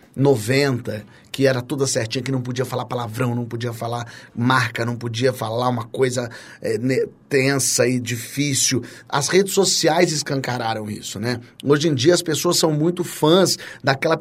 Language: Portuguese